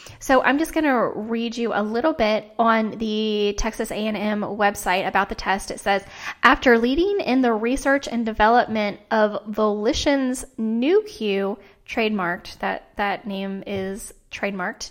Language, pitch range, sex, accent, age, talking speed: English, 205-240 Hz, female, American, 10-29, 140 wpm